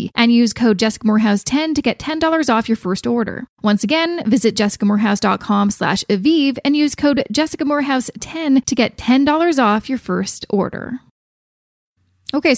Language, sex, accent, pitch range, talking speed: English, female, American, 200-250 Hz, 155 wpm